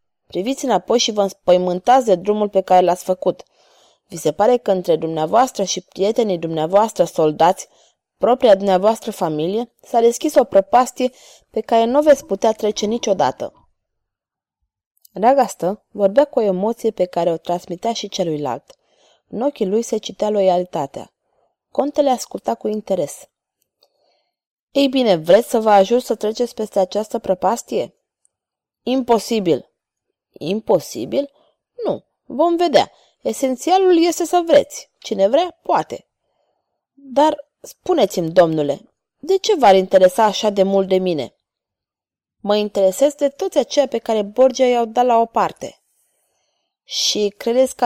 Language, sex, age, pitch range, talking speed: Romanian, female, 20-39, 190-265 Hz, 140 wpm